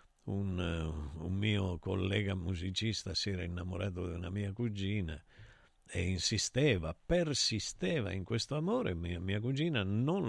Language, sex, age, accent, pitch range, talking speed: Italian, male, 50-69, native, 90-130 Hz, 130 wpm